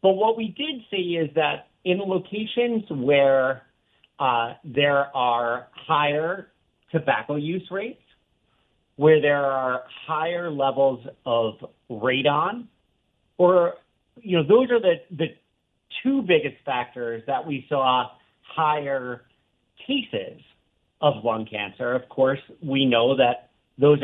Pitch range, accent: 130-185 Hz, American